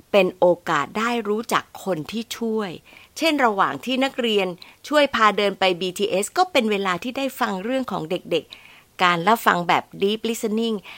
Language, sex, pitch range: Thai, female, 185-250 Hz